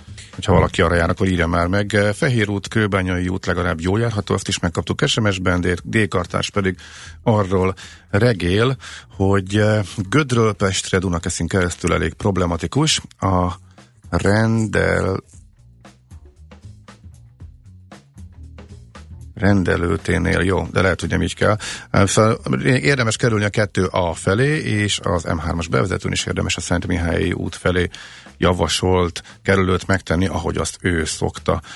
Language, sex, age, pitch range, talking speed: Hungarian, male, 40-59, 90-110 Hz, 125 wpm